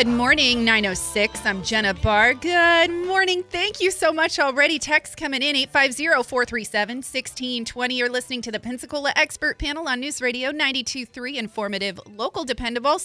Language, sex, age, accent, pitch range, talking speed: English, female, 30-49, American, 205-265 Hz, 150 wpm